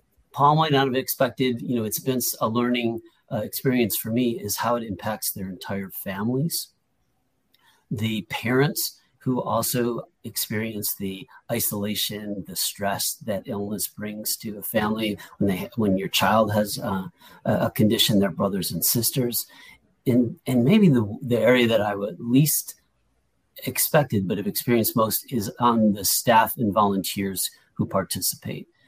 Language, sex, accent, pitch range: English, male, American, 105-130 Hz